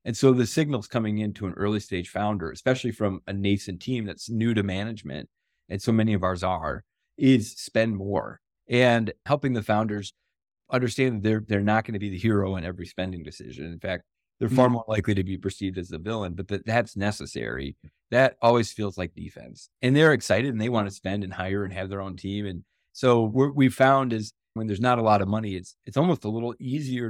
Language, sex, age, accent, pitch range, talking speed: English, male, 30-49, American, 95-115 Hz, 220 wpm